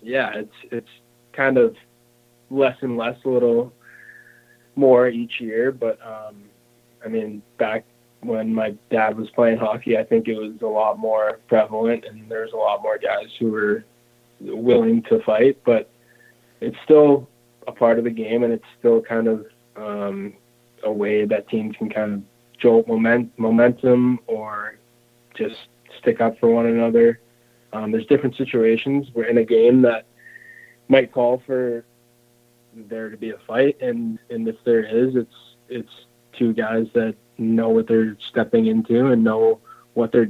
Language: English